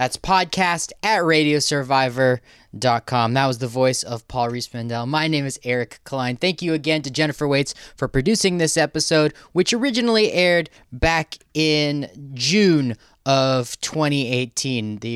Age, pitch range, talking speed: 20-39, 120-155 Hz, 145 wpm